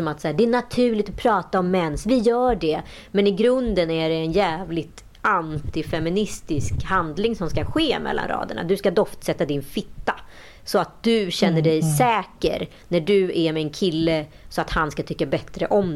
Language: Swedish